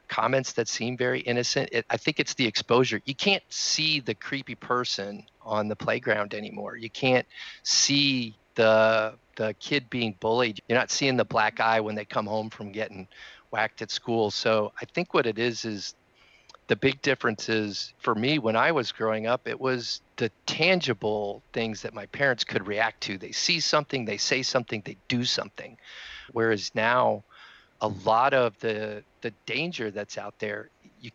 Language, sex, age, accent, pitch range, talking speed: English, male, 40-59, American, 105-125 Hz, 180 wpm